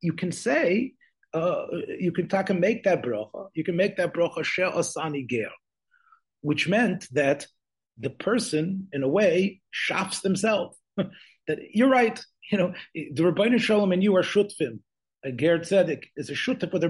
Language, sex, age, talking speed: English, male, 40-59, 175 wpm